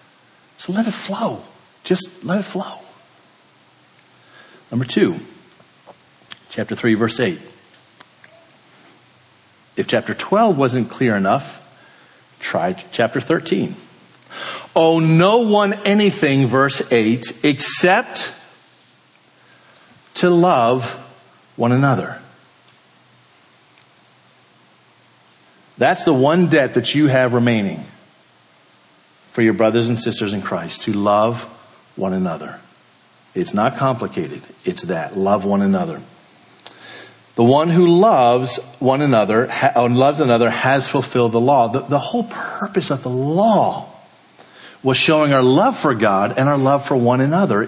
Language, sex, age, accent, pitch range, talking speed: English, male, 50-69, American, 110-175 Hz, 115 wpm